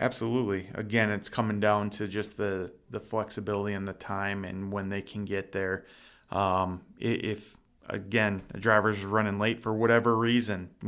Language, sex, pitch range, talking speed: English, male, 100-110 Hz, 160 wpm